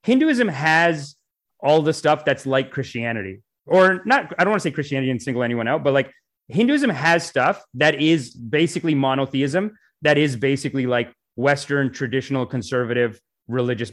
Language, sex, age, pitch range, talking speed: English, male, 30-49, 125-150 Hz, 160 wpm